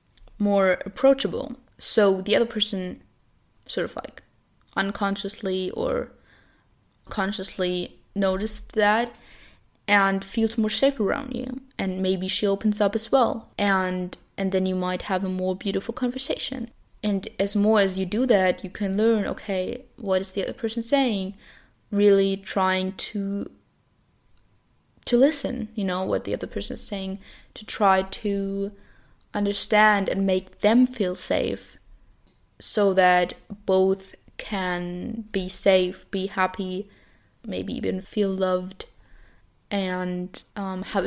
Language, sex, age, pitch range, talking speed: English, female, 10-29, 190-220 Hz, 135 wpm